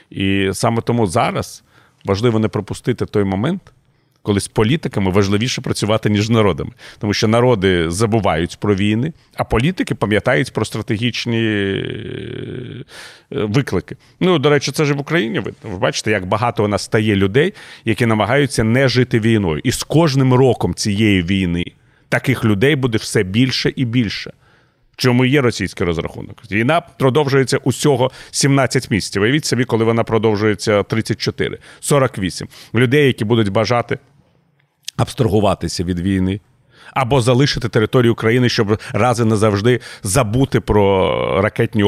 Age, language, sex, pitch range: 40-59, Ukrainian, male, 105-130 Hz